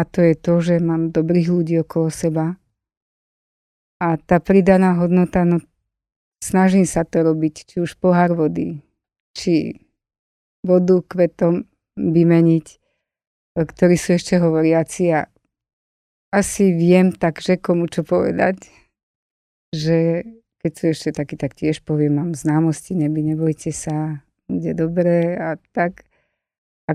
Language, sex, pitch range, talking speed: Slovak, female, 155-175 Hz, 130 wpm